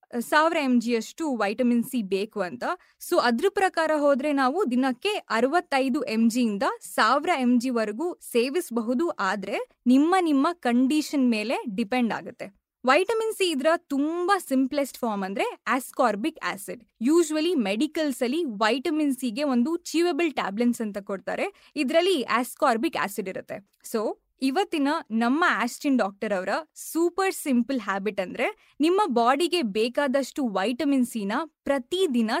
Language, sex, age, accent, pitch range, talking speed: Kannada, female, 20-39, native, 235-315 Hz, 125 wpm